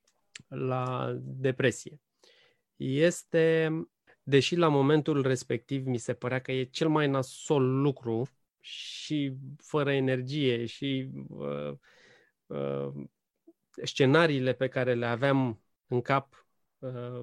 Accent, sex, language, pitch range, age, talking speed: native, male, Romanian, 120-155 Hz, 20-39, 105 wpm